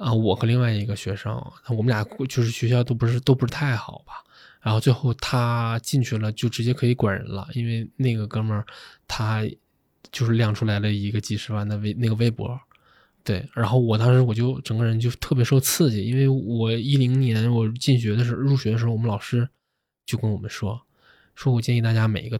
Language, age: Chinese, 20-39